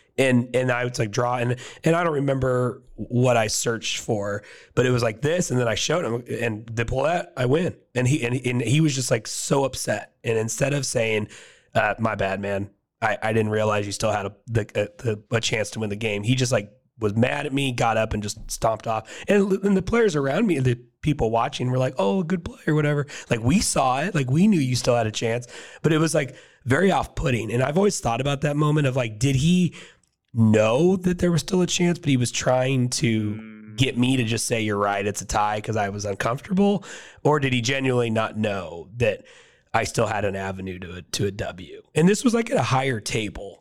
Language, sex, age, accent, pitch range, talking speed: English, male, 30-49, American, 110-140 Hz, 245 wpm